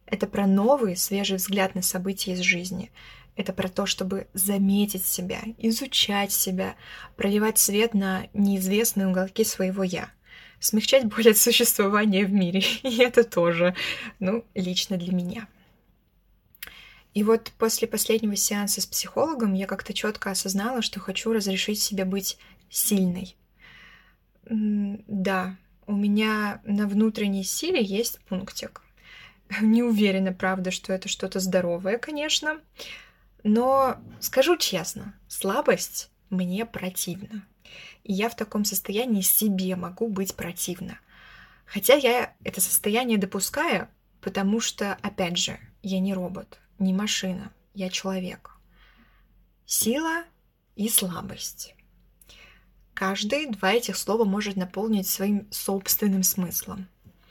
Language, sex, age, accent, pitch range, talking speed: Russian, female, 20-39, native, 190-220 Hz, 120 wpm